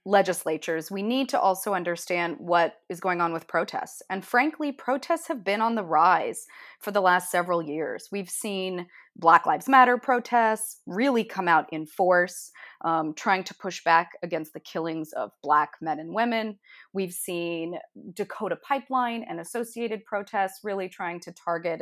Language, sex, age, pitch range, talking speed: English, female, 30-49, 165-210 Hz, 165 wpm